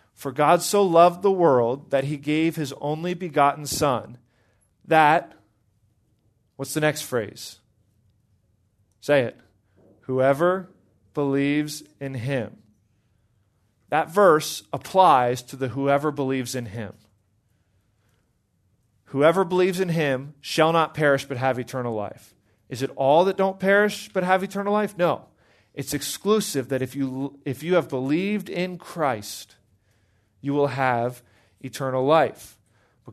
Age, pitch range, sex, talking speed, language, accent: 40-59, 110-160 Hz, male, 130 wpm, English, American